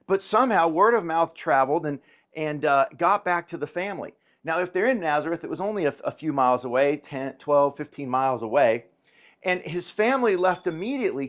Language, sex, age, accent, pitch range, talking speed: English, male, 50-69, American, 150-205 Hz, 195 wpm